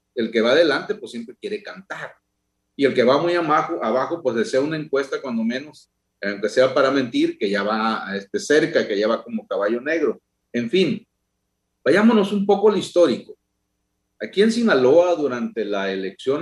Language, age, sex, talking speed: Spanish, 40-59, male, 180 wpm